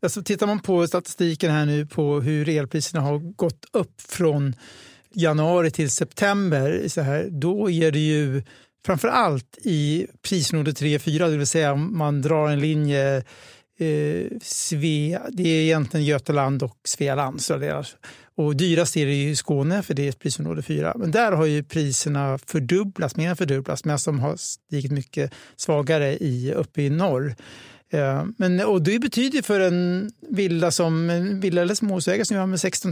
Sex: male